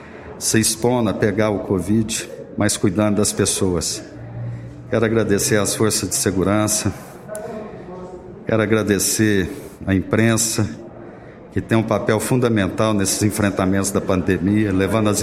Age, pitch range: 50-69, 100-120 Hz